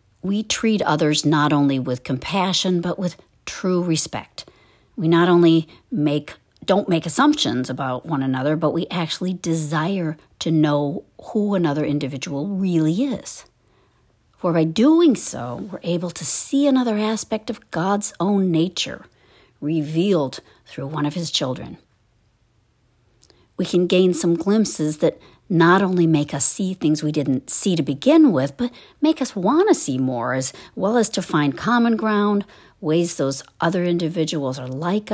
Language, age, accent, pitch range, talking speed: English, 50-69, American, 135-190 Hz, 155 wpm